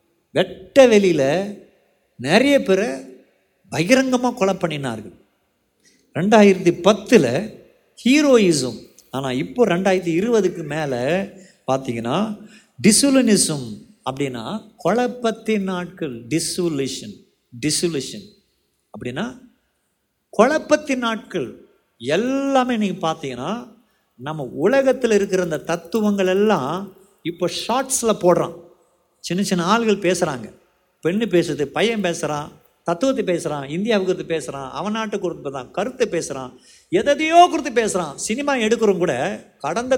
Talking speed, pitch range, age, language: 95 wpm, 175-240 Hz, 50-69, Tamil